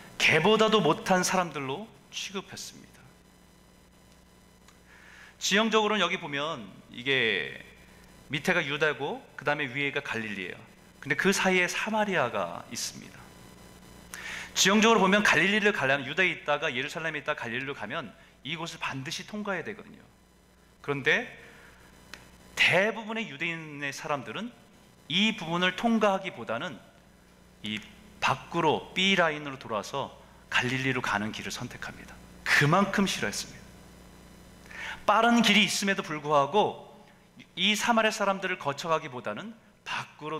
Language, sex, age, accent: Korean, male, 40-59, native